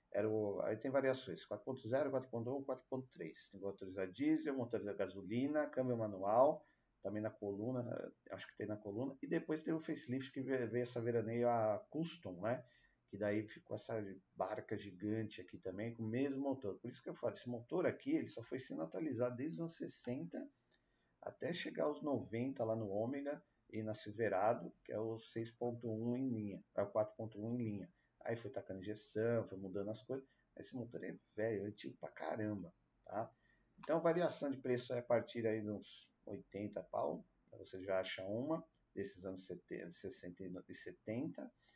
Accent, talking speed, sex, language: Brazilian, 175 wpm, male, Portuguese